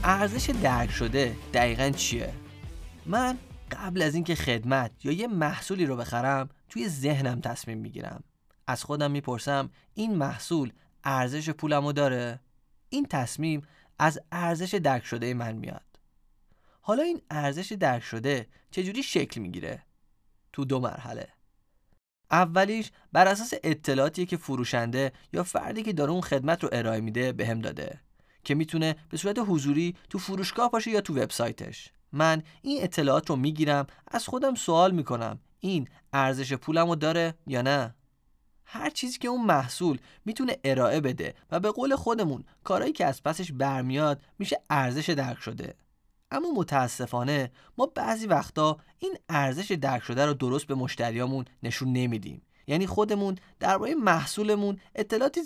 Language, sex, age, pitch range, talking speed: Persian, male, 20-39, 130-185 Hz, 140 wpm